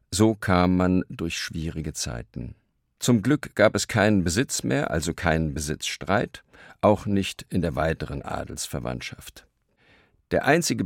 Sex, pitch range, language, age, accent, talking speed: male, 85-110 Hz, German, 50-69, German, 135 wpm